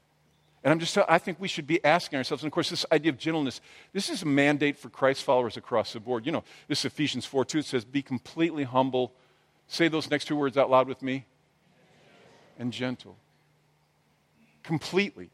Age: 50-69